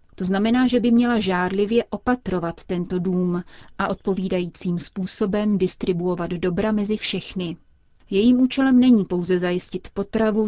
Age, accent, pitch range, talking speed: 30-49, native, 180-205 Hz, 125 wpm